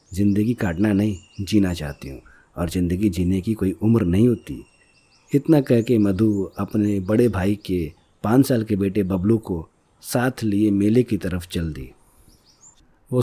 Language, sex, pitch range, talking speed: Hindi, male, 95-125 Hz, 165 wpm